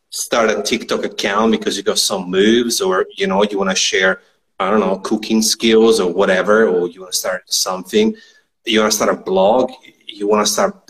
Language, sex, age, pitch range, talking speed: English, male, 30-49, 105-135 Hz, 215 wpm